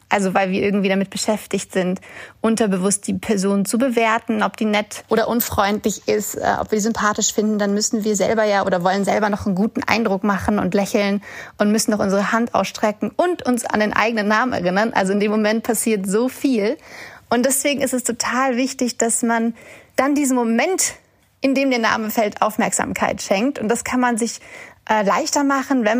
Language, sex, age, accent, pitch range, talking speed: German, female, 30-49, German, 205-255 Hz, 195 wpm